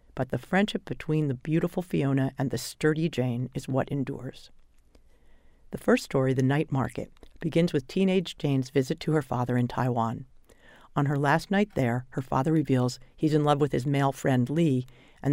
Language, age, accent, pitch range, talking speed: English, 40-59, American, 130-155 Hz, 185 wpm